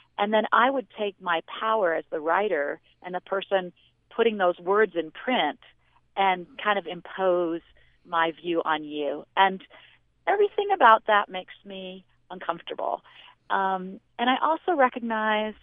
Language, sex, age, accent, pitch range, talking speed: English, female, 40-59, American, 180-220 Hz, 145 wpm